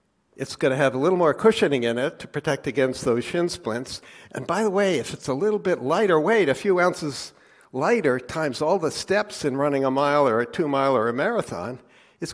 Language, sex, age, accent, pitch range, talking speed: English, male, 60-79, American, 130-170 Hz, 225 wpm